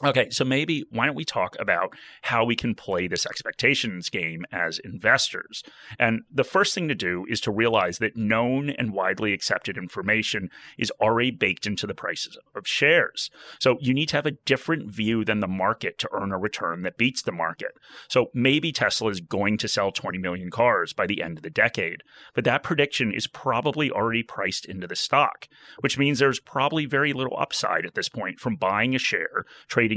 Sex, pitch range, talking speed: male, 105-135 Hz, 200 wpm